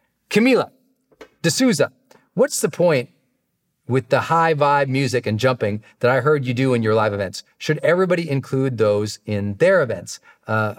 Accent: American